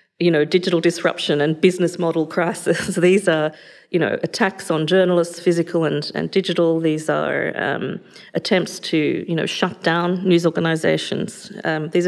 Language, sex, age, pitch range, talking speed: English, female, 40-59, 160-180 Hz, 155 wpm